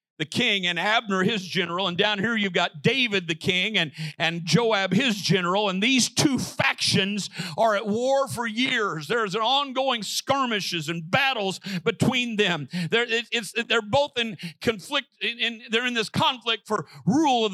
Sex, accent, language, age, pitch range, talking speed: male, American, English, 50-69, 195-250 Hz, 180 wpm